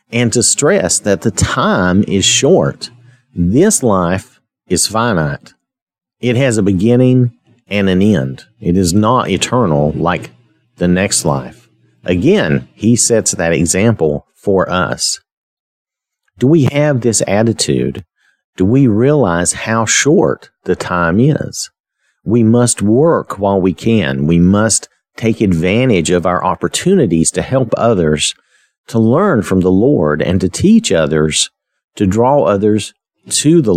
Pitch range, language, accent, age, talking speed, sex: 85-115 Hz, English, American, 50-69, 135 wpm, male